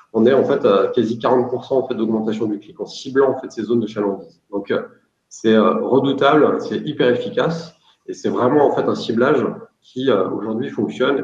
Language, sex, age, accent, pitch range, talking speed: French, male, 40-59, French, 105-140 Hz, 190 wpm